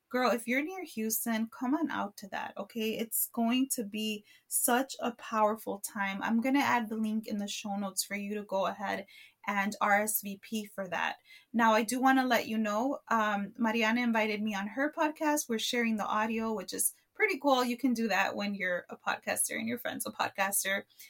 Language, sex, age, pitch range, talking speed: English, female, 20-39, 210-255 Hz, 210 wpm